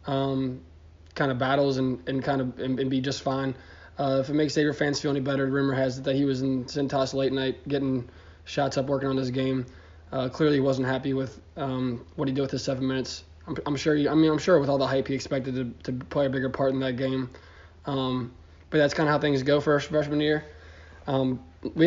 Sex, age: male, 20-39